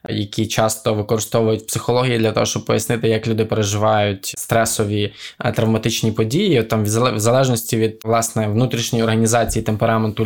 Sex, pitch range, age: male, 110-125 Hz, 20-39